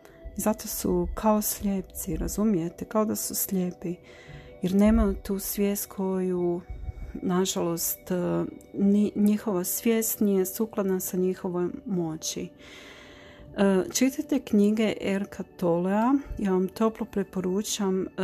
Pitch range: 175-205 Hz